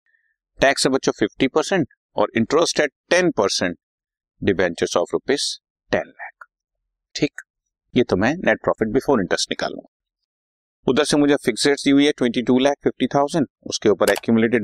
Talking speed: 95 wpm